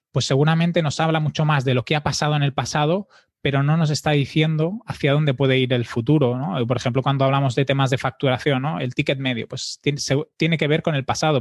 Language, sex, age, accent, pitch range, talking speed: Spanish, male, 20-39, Spanish, 130-150 Hz, 235 wpm